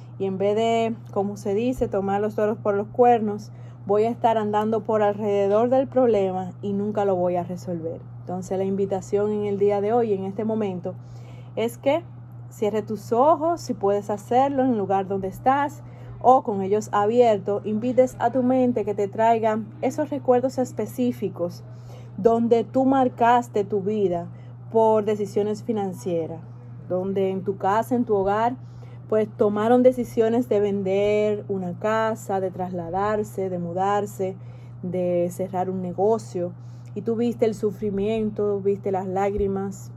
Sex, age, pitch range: female, 30-49, 180-225 Hz